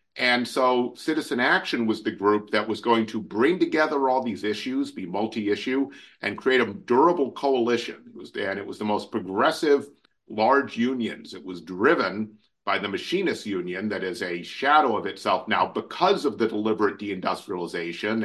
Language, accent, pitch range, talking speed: English, American, 105-125 Hz, 170 wpm